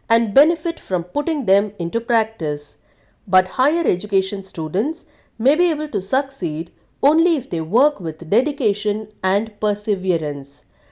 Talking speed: 130 wpm